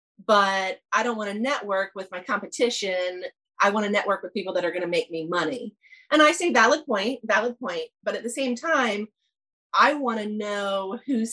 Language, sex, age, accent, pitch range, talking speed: English, female, 30-49, American, 190-235 Hz, 205 wpm